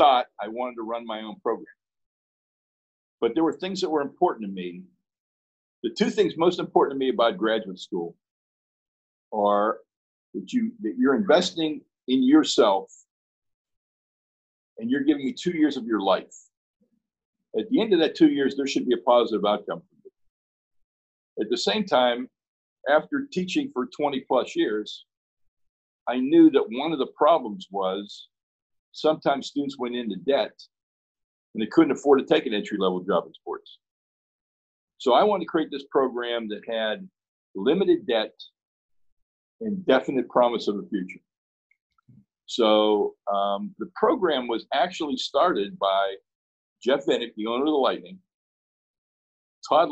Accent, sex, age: American, male, 50-69